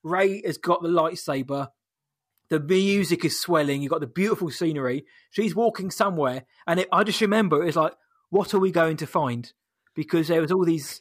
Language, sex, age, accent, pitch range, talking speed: English, male, 20-39, British, 150-175 Hz, 190 wpm